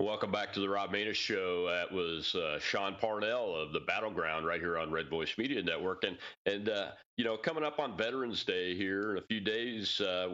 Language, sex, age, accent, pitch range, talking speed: English, male, 40-59, American, 100-155 Hz, 220 wpm